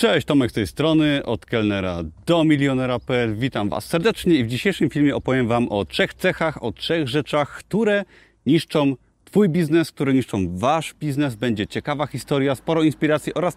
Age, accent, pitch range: 30-49, native, 120-165 Hz